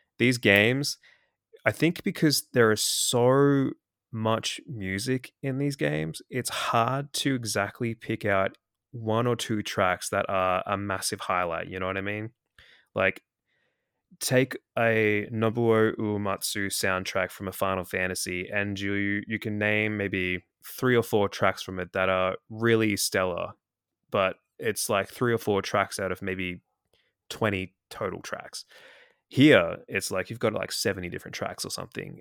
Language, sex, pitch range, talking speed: English, male, 95-115 Hz, 155 wpm